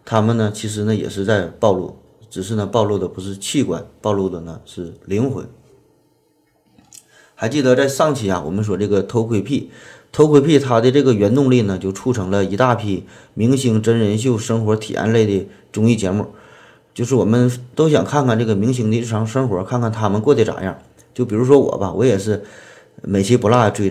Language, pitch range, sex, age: Chinese, 100-120 Hz, male, 30-49